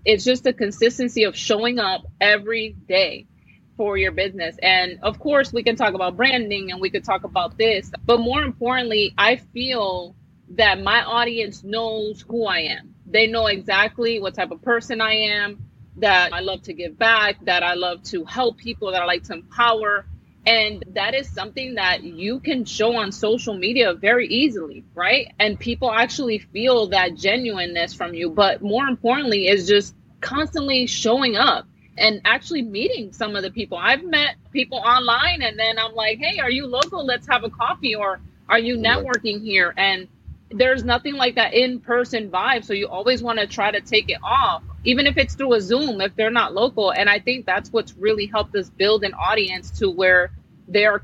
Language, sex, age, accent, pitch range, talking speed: English, female, 30-49, American, 195-235 Hz, 190 wpm